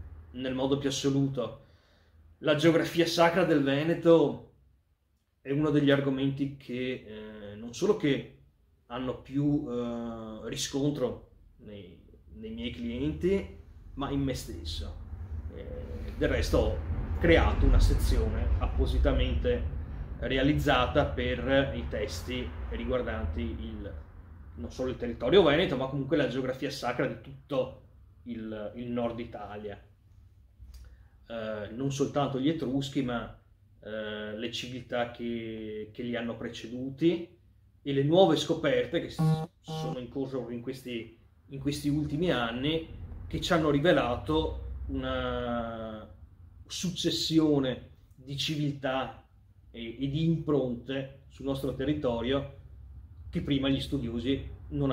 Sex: male